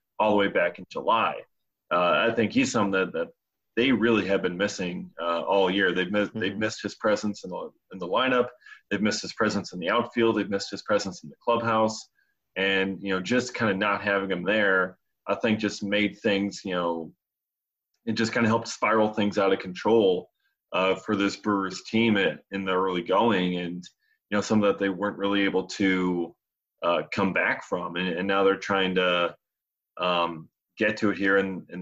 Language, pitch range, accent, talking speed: English, 95-110 Hz, American, 205 wpm